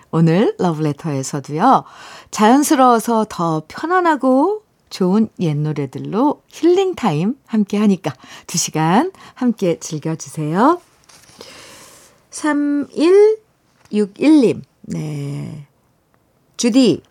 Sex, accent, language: female, native, Korean